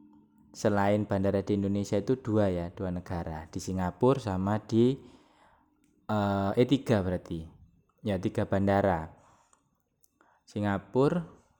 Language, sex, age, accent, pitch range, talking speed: Indonesian, male, 20-39, native, 95-115 Hz, 110 wpm